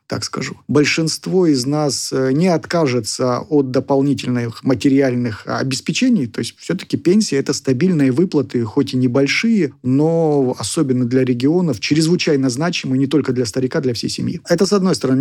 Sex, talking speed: male, 150 wpm